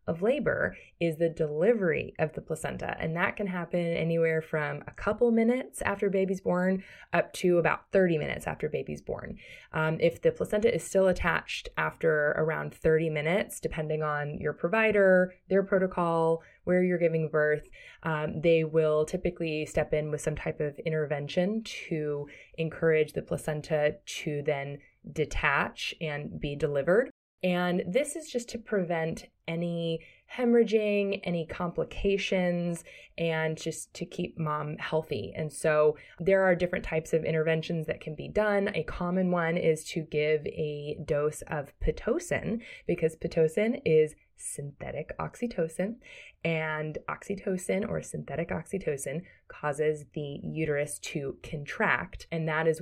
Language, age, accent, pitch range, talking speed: English, 20-39, American, 155-185 Hz, 145 wpm